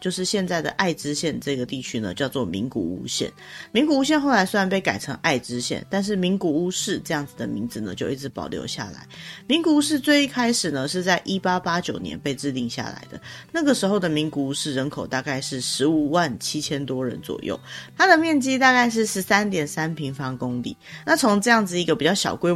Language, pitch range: Chinese, 140-205 Hz